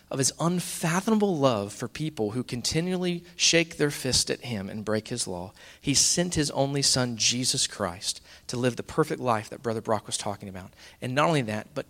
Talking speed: 200 wpm